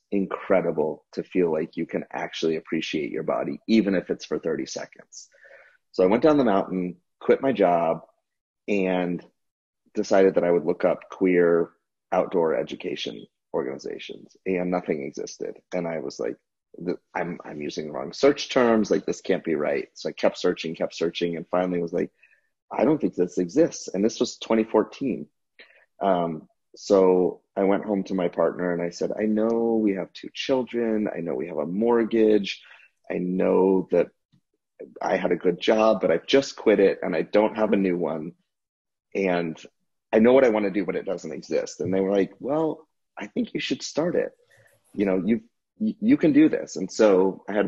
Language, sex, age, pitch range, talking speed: English, male, 30-49, 90-115 Hz, 190 wpm